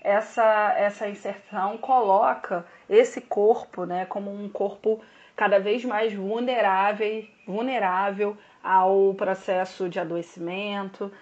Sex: female